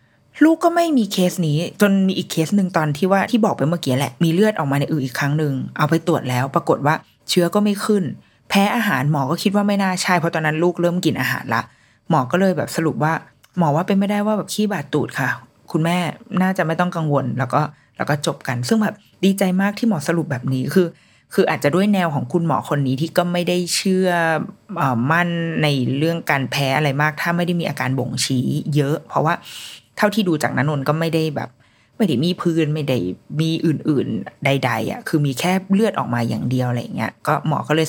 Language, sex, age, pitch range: Thai, female, 20-39, 140-180 Hz